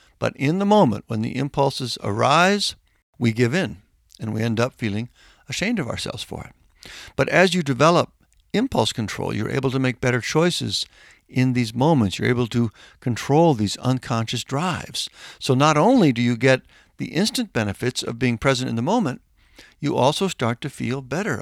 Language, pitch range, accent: English, 105-135 Hz, American